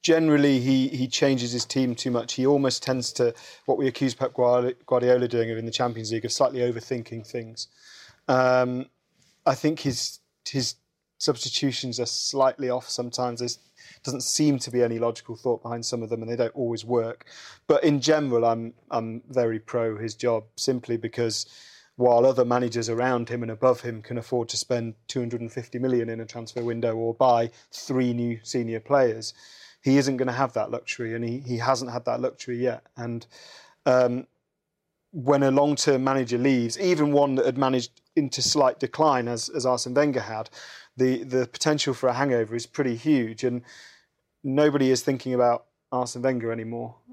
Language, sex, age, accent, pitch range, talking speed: English, male, 30-49, British, 120-135 Hz, 180 wpm